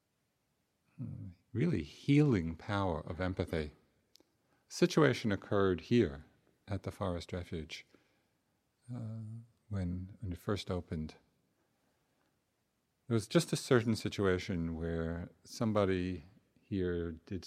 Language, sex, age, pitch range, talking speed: English, male, 50-69, 85-105 Hz, 95 wpm